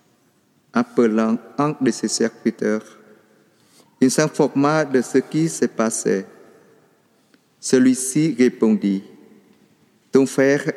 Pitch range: 120-145 Hz